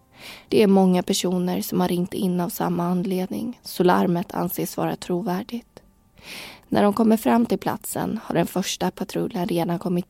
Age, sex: 20-39, female